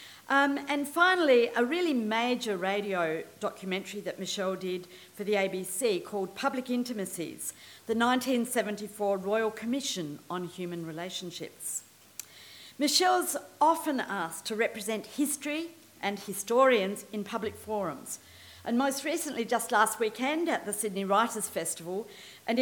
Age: 40-59